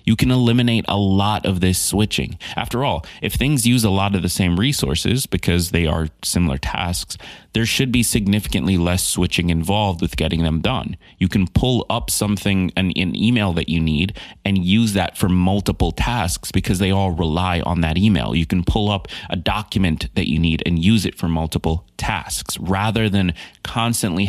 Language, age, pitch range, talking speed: English, 30-49, 85-105 Hz, 190 wpm